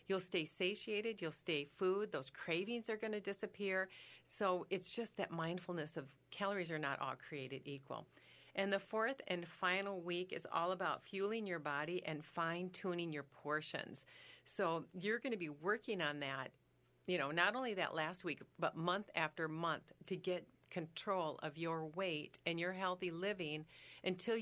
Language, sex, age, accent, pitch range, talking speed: English, female, 40-59, American, 160-200 Hz, 170 wpm